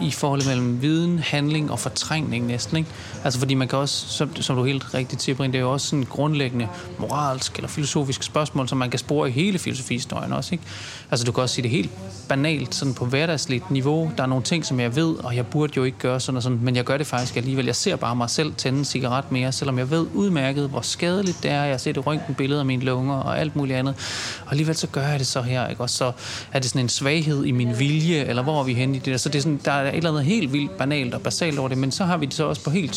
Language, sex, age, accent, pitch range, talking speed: Danish, male, 30-49, native, 125-150 Hz, 260 wpm